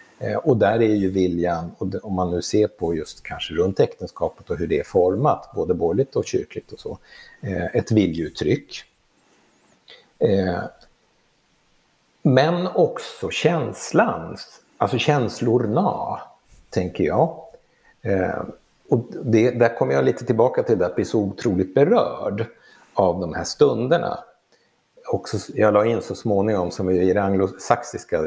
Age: 60-79